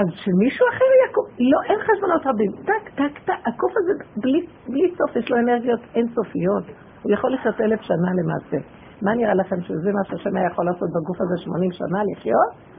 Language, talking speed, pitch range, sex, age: Hebrew, 180 wpm, 185-245 Hz, female, 50-69